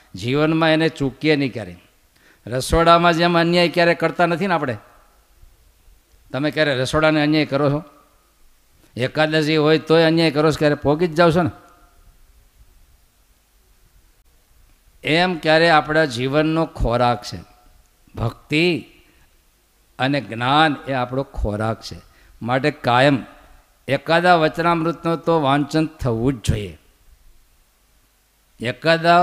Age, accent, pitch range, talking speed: 50-69, native, 115-160 Hz, 105 wpm